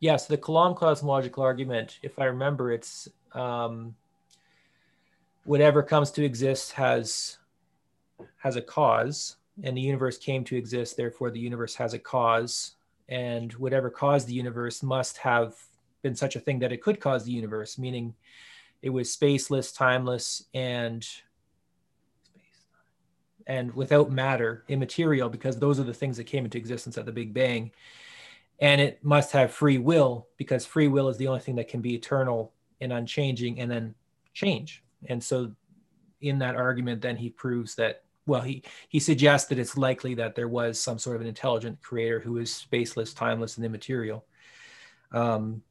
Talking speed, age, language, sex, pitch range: 165 wpm, 30-49, English, male, 120-140 Hz